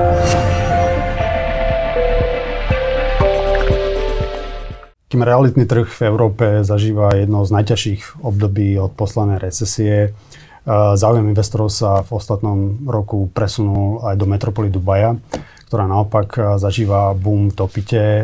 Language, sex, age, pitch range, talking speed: Slovak, male, 30-49, 100-115 Hz, 100 wpm